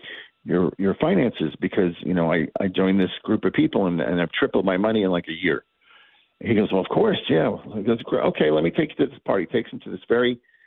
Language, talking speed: English, 245 wpm